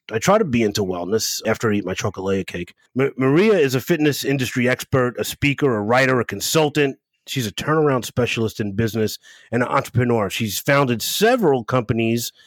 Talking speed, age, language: 180 wpm, 30-49, English